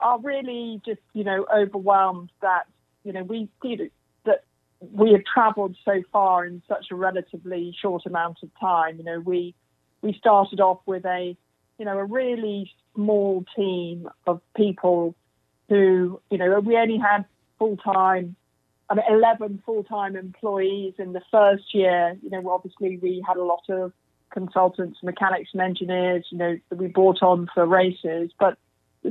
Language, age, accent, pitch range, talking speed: English, 40-59, British, 185-205 Hz, 165 wpm